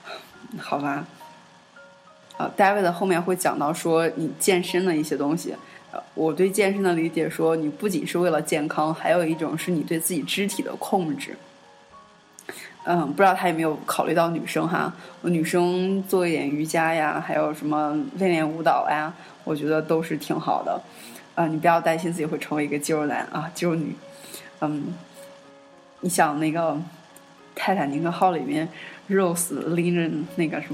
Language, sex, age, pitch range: Chinese, female, 20-39, 155-180 Hz